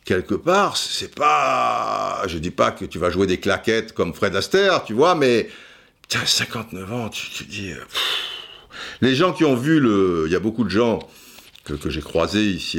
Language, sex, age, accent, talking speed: French, male, 50-69, French, 200 wpm